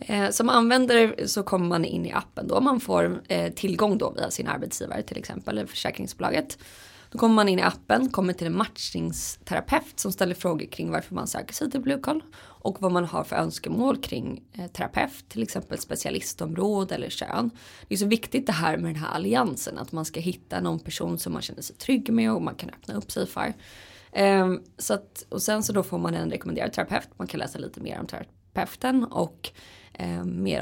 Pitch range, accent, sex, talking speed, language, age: 160-230 Hz, Swedish, female, 195 wpm, English, 20-39